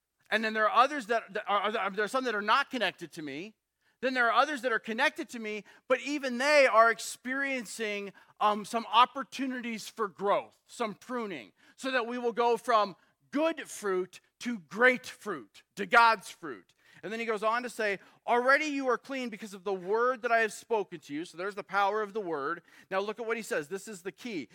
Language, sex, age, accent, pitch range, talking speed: English, male, 40-59, American, 205-245 Hz, 220 wpm